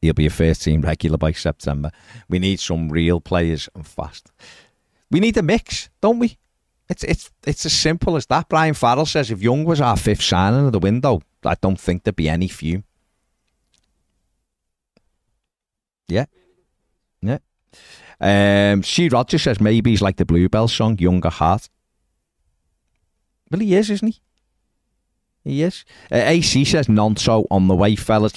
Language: English